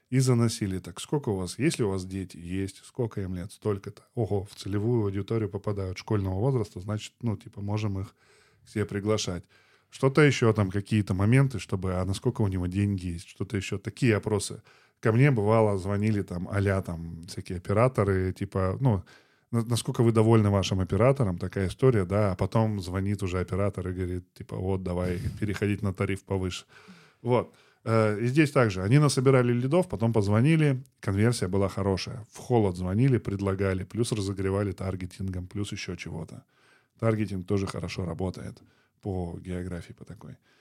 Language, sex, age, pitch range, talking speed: Russian, male, 10-29, 95-115 Hz, 160 wpm